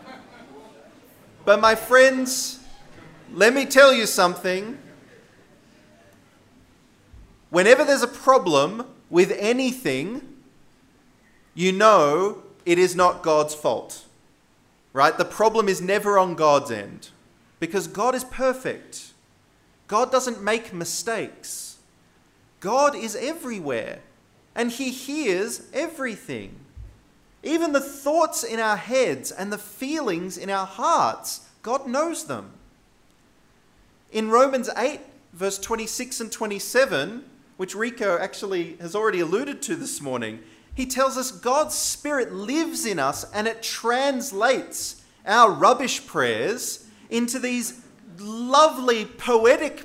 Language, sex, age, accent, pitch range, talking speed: English, male, 30-49, Australian, 200-270 Hz, 110 wpm